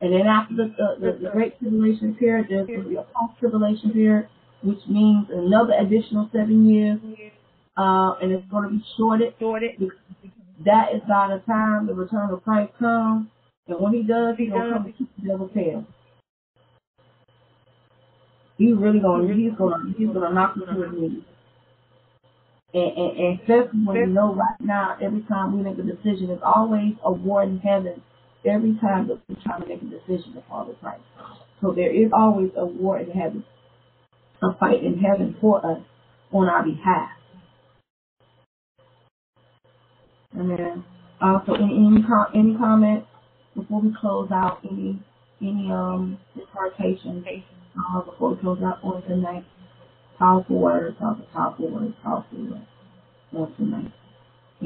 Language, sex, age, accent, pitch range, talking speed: English, female, 30-49, American, 180-220 Hz, 165 wpm